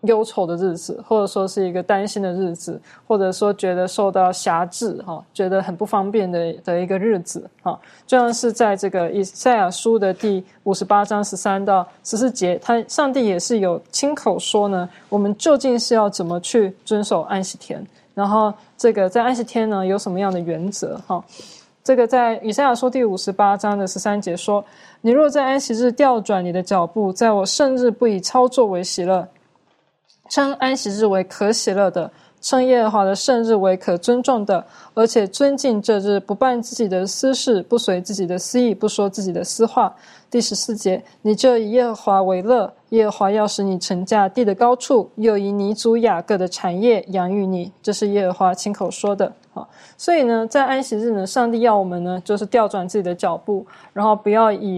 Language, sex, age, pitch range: Chinese, female, 20-39, 190-230 Hz